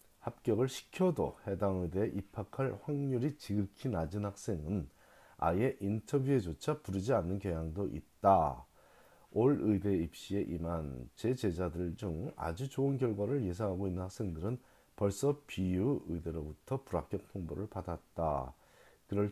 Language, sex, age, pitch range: Korean, male, 40-59, 90-120 Hz